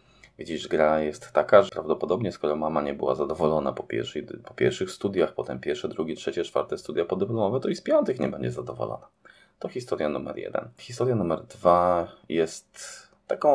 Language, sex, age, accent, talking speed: Polish, male, 20-39, native, 170 wpm